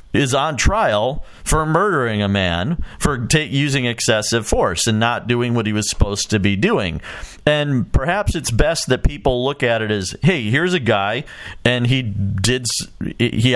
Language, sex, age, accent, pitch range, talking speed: English, male, 40-59, American, 100-125 Hz, 175 wpm